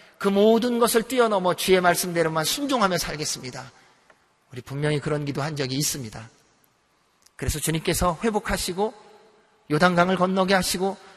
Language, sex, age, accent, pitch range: Korean, male, 40-59, native, 125-170 Hz